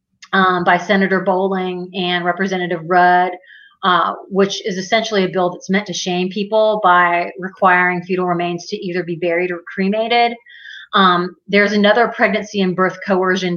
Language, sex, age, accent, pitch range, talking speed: English, female, 30-49, American, 180-210 Hz, 155 wpm